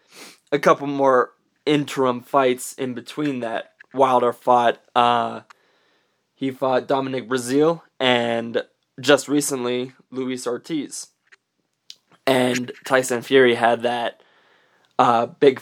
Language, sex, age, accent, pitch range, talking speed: English, male, 20-39, American, 125-140 Hz, 105 wpm